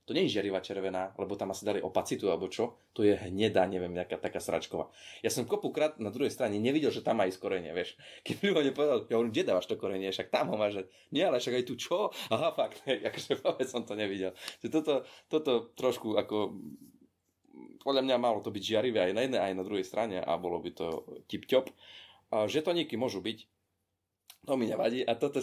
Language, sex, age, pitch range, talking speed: Slovak, male, 20-39, 95-125 Hz, 210 wpm